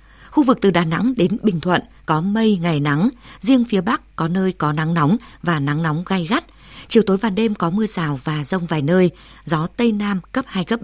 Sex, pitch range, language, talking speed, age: female, 165-220 Hz, Vietnamese, 235 wpm, 20-39